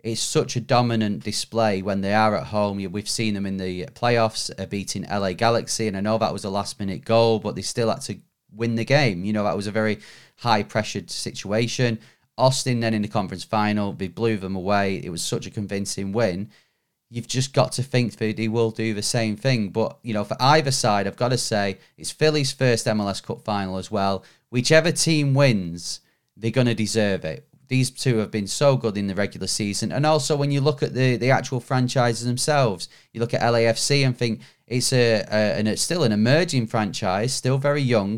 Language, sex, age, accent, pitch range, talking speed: English, male, 30-49, British, 105-125 Hz, 215 wpm